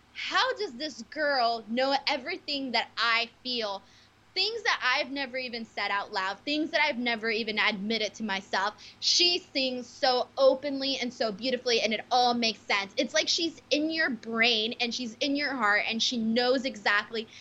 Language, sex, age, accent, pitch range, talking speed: English, female, 20-39, American, 230-285 Hz, 180 wpm